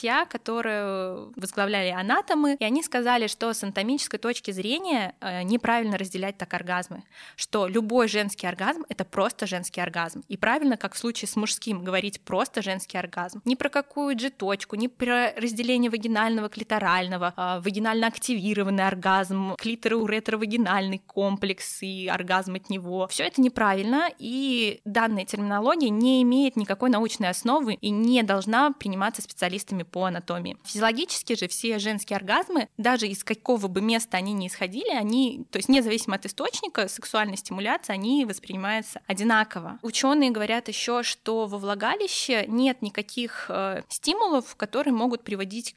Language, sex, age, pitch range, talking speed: Russian, female, 20-39, 195-245 Hz, 140 wpm